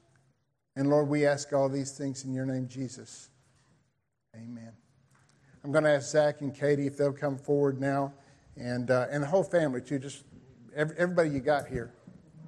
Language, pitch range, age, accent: English, 125-150 Hz, 50-69, American